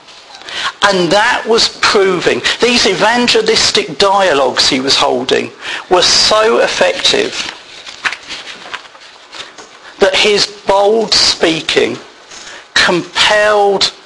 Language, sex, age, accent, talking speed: English, male, 50-69, British, 75 wpm